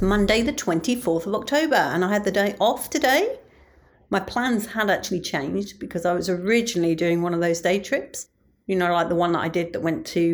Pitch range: 175-225 Hz